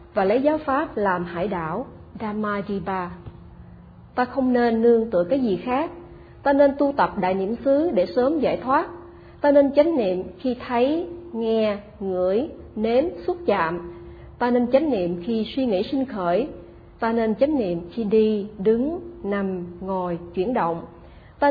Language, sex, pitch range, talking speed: Vietnamese, female, 185-255 Hz, 165 wpm